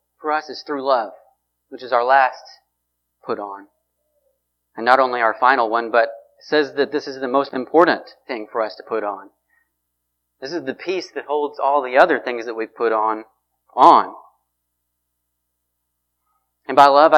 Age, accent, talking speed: 30-49, American, 170 wpm